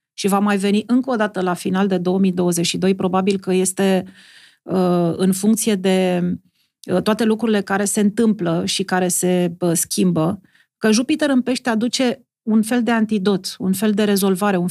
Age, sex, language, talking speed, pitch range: 40-59, female, Romanian, 165 wpm, 190-220 Hz